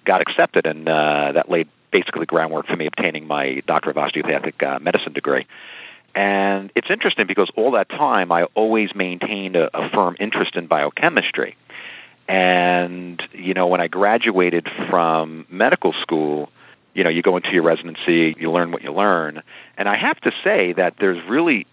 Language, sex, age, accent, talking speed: English, male, 50-69, American, 175 wpm